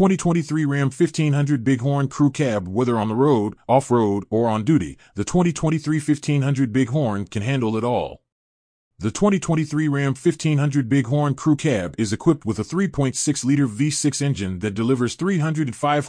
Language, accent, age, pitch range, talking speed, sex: English, American, 30-49, 110-150 Hz, 145 wpm, male